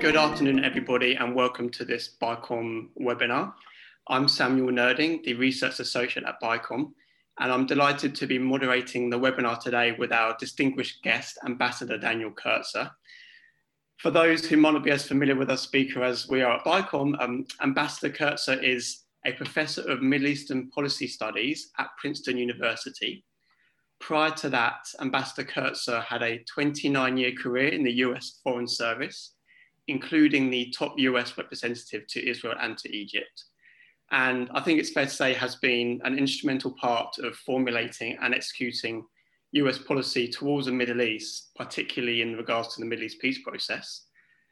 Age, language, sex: 20-39, English, male